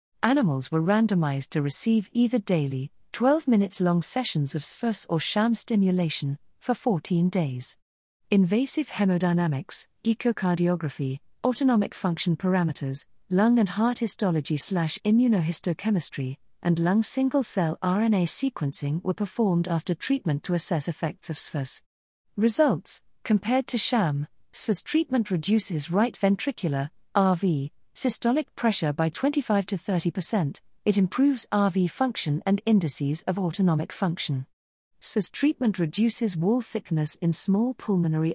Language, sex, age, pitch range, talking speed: English, female, 50-69, 160-220 Hz, 115 wpm